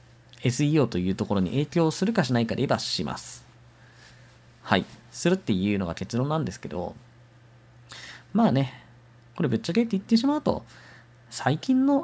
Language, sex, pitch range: Japanese, male, 115-175 Hz